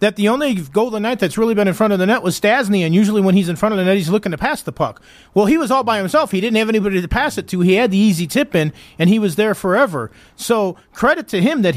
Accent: American